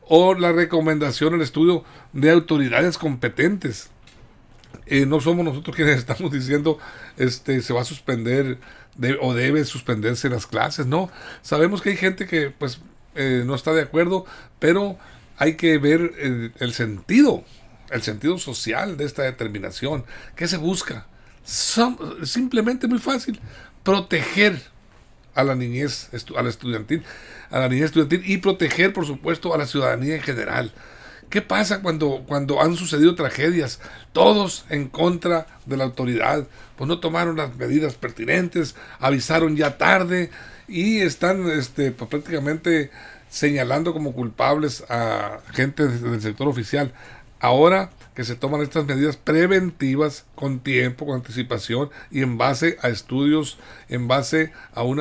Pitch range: 125-165 Hz